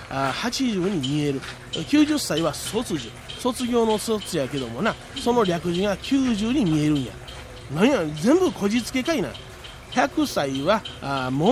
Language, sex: Japanese, male